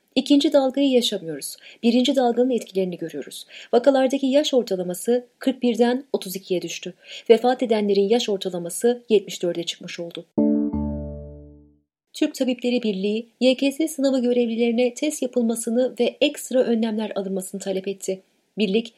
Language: Turkish